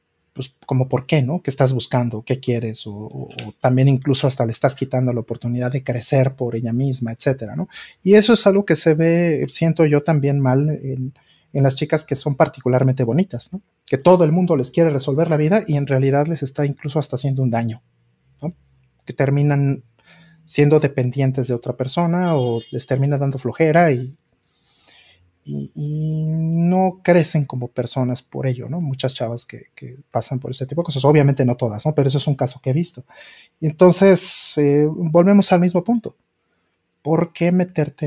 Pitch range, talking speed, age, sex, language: 125-160 Hz, 190 wpm, 30-49, male, Spanish